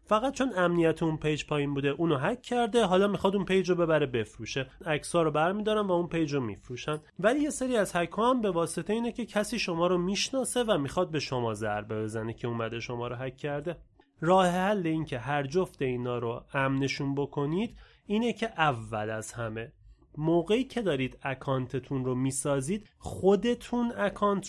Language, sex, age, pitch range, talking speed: Persian, male, 30-49, 130-195 Hz, 180 wpm